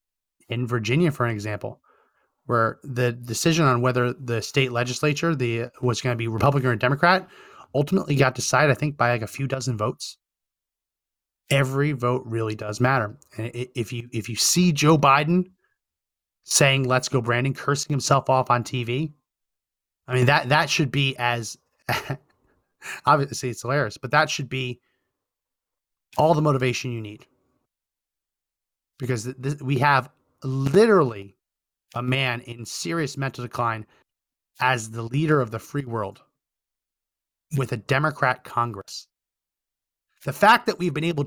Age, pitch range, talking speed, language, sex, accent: 30-49, 120-150 Hz, 150 wpm, English, male, American